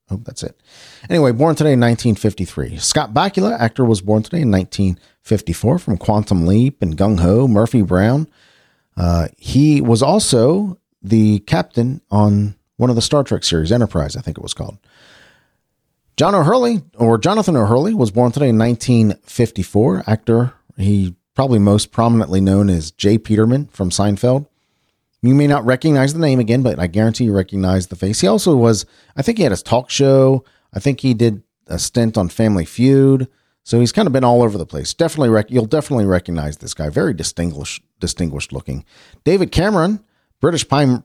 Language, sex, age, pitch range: English, male, 40-59, 100-135 Hz